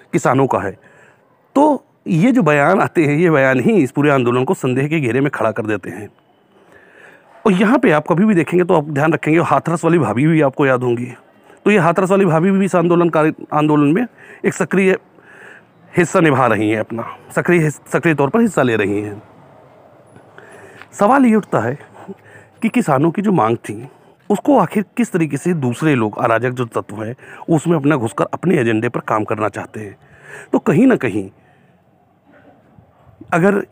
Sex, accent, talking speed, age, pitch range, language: male, native, 185 wpm, 40-59, 125-175 Hz, Hindi